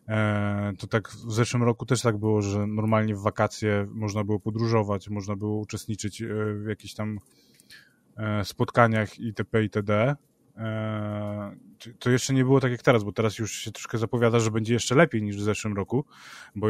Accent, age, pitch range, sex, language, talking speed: native, 20-39, 105-120 Hz, male, Polish, 165 wpm